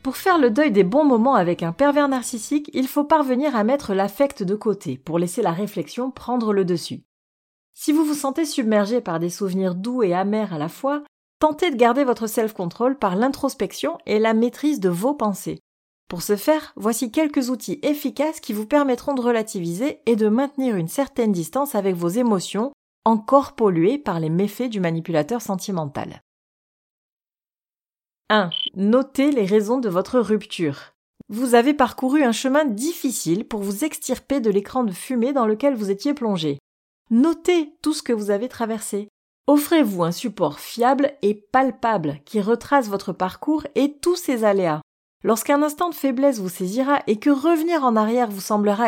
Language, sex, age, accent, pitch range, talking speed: French, female, 30-49, French, 200-275 Hz, 175 wpm